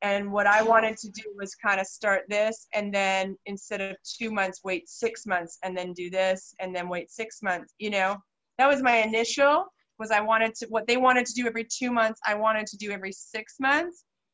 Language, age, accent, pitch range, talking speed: English, 30-49, American, 195-230 Hz, 225 wpm